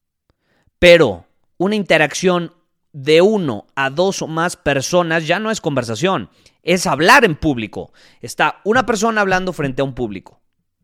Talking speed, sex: 145 wpm, male